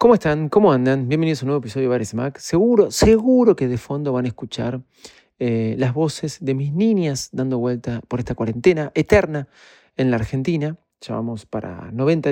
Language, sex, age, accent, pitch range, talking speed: Spanish, male, 40-59, Argentinian, 125-170 Hz, 185 wpm